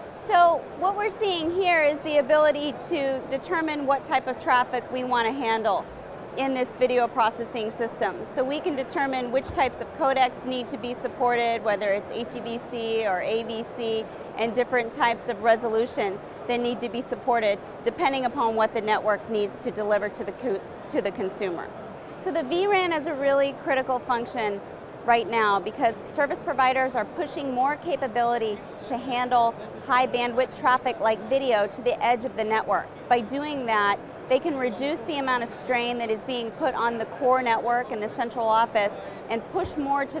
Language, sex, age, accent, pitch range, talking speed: English, female, 30-49, American, 225-270 Hz, 180 wpm